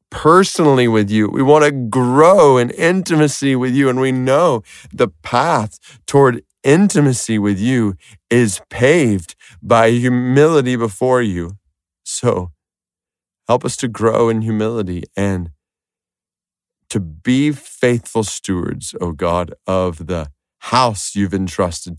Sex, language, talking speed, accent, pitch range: male, English, 125 wpm, American, 90-130 Hz